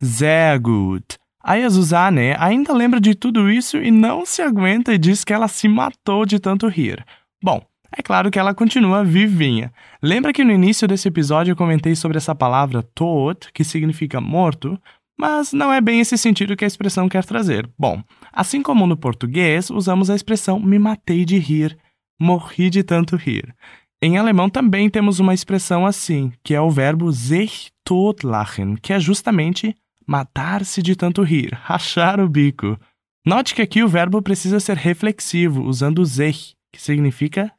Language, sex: Portuguese, male